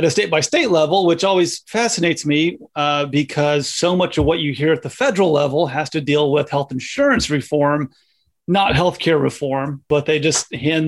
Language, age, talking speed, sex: English, 30-49, 205 wpm, male